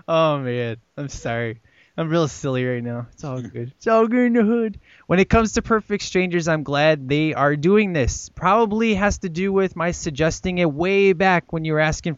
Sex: male